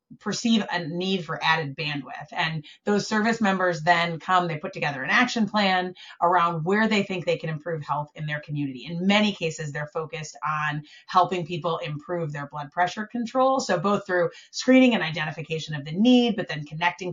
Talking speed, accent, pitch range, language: 190 wpm, American, 160-195 Hz, English